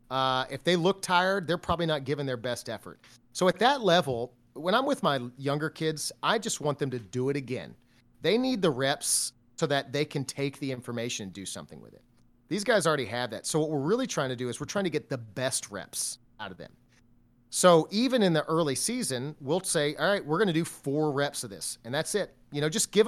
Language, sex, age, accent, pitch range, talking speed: English, male, 30-49, American, 130-170 Hz, 245 wpm